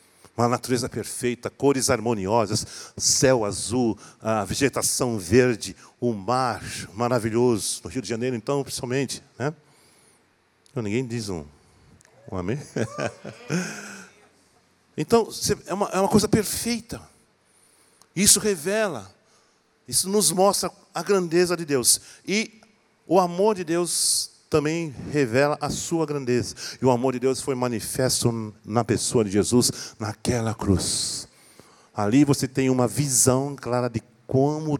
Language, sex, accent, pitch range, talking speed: Portuguese, male, Brazilian, 120-150 Hz, 130 wpm